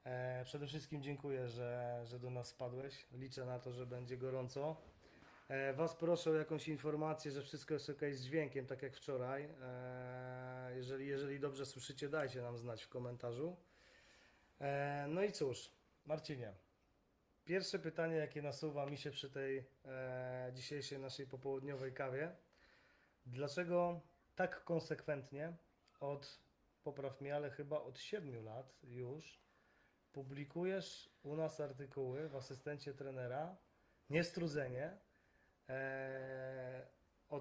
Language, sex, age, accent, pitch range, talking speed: Polish, male, 20-39, native, 130-155 Hz, 120 wpm